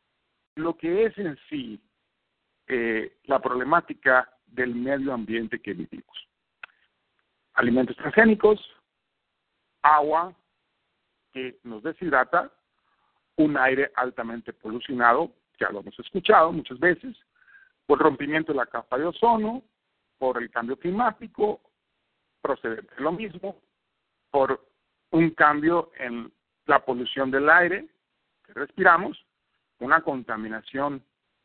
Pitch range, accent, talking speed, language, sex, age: 130-215 Hz, Mexican, 105 wpm, English, male, 50-69